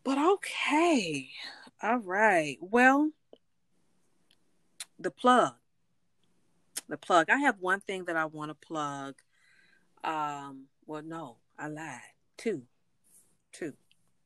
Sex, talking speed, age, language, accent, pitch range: female, 100 wpm, 30-49, English, American, 135-175 Hz